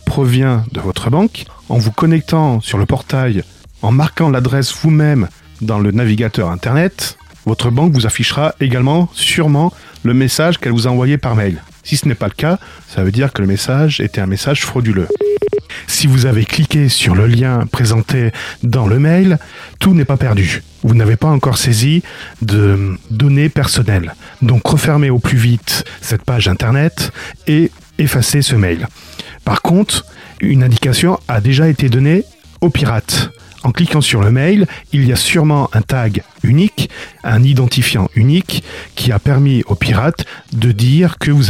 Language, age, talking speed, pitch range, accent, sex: French, 40-59, 170 wpm, 115-150 Hz, French, male